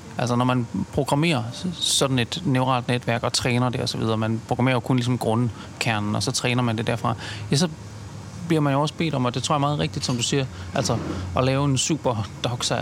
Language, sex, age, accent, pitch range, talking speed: Danish, male, 30-49, native, 120-150 Hz, 220 wpm